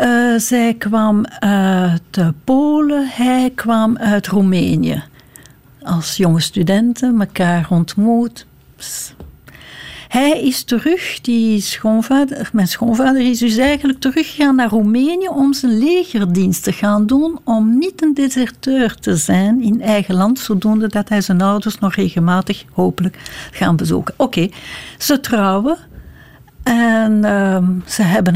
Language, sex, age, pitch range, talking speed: Dutch, female, 60-79, 190-245 Hz, 130 wpm